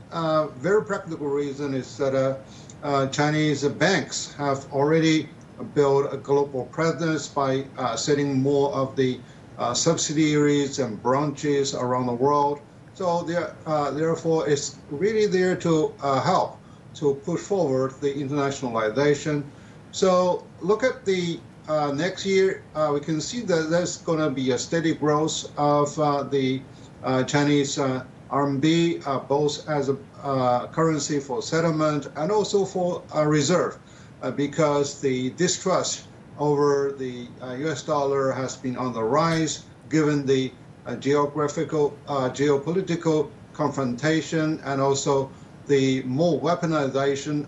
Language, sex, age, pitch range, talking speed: English, male, 50-69, 135-160 Hz, 135 wpm